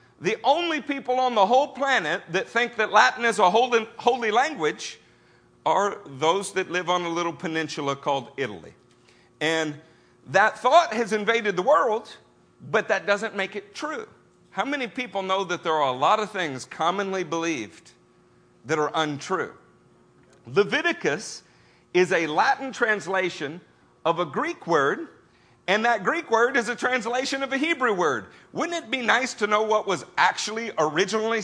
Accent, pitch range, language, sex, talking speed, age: American, 170-240 Hz, English, male, 160 wpm, 50-69